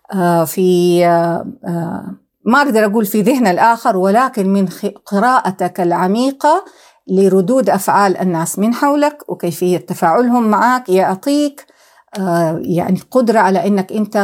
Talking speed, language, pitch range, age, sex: 105 wpm, Arabic, 180-240 Hz, 50-69, female